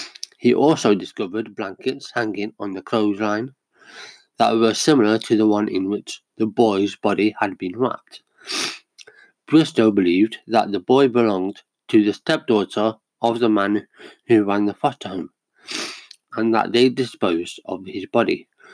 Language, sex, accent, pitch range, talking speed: English, male, British, 105-120 Hz, 145 wpm